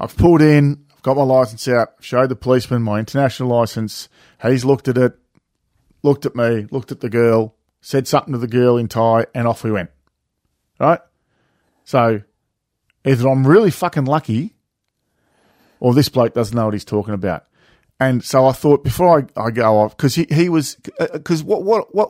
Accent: Australian